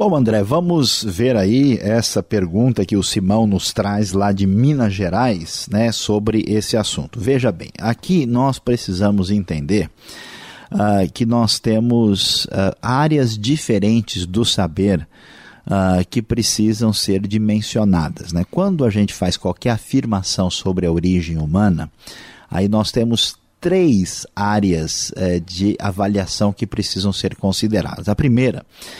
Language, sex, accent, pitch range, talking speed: Portuguese, male, Brazilian, 95-120 Hz, 135 wpm